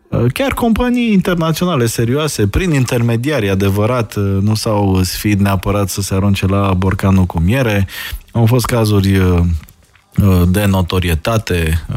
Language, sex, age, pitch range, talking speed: Romanian, male, 20-39, 90-115 Hz, 115 wpm